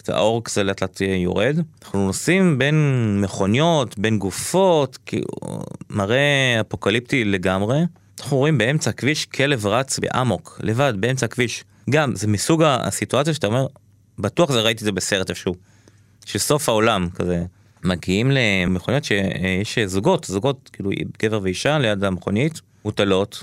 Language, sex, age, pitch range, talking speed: Hebrew, male, 20-39, 100-140 Hz, 130 wpm